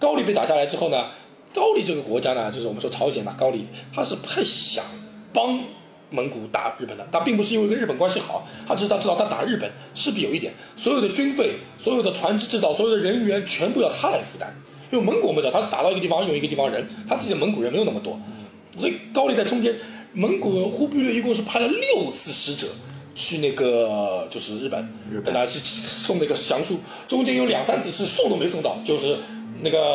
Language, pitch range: Chinese, 150-235 Hz